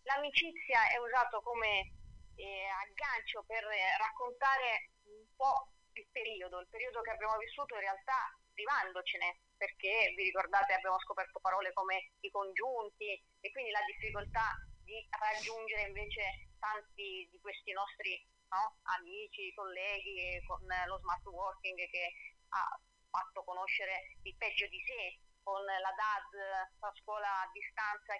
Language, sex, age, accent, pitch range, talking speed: Italian, female, 30-49, native, 190-260 Hz, 130 wpm